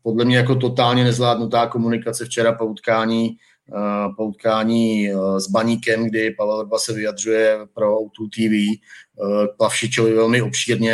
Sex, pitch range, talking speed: male, 105-115 Hz, 145 wpm